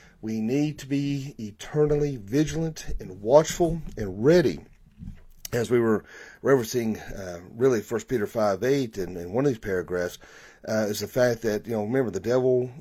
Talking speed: 170 wpm